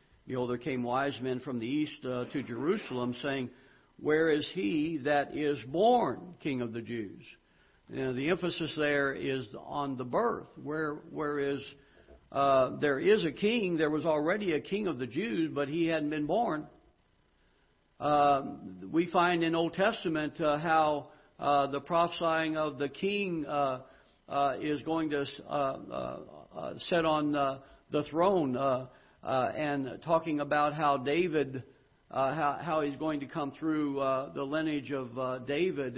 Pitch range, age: 140-170 Hz, 60-79